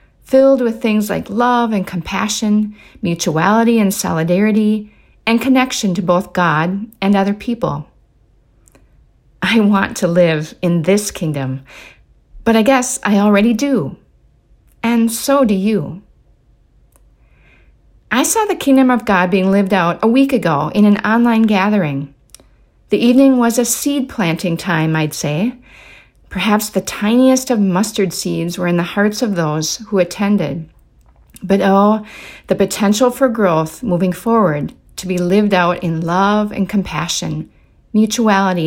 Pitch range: 170-225 Hz